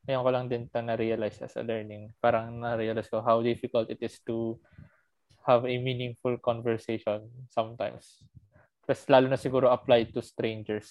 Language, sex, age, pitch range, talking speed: Filipino, male, 20-39, 110-130 Hz, 160 wpm